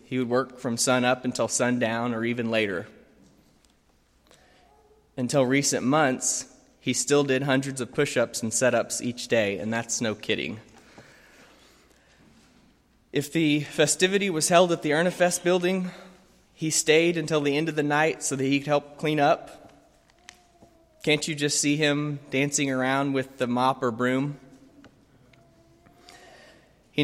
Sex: male